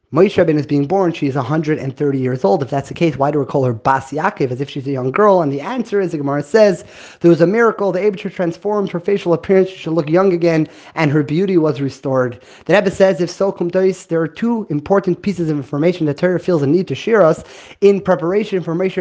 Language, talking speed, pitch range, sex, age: English, 235 wpm, 155-200 Hz, male, 30-49